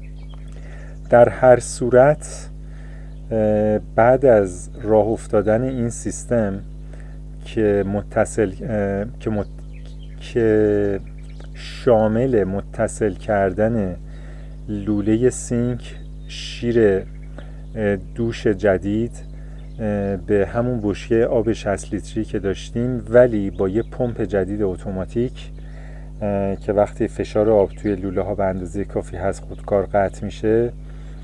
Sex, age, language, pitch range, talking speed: male, 40-59, Persian, 100-125 Hz, 95 wpm